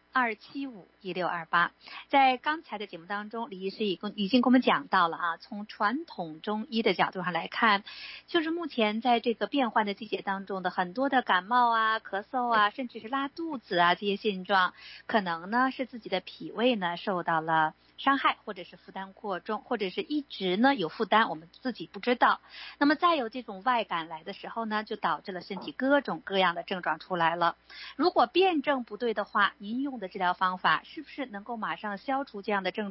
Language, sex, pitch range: Chinese, female, 190-255 Hz